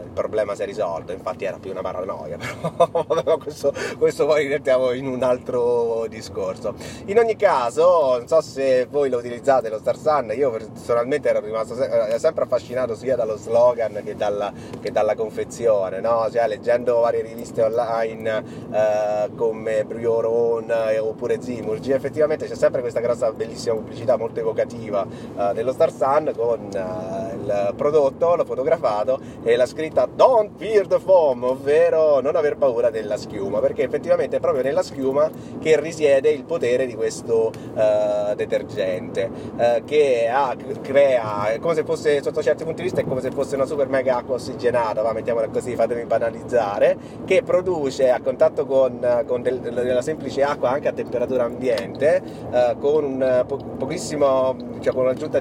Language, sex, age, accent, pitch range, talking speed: Italian, male, 30-49, native, 115-155 Hz, 165 wpm